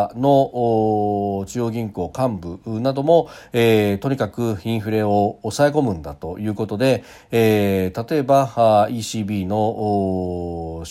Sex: male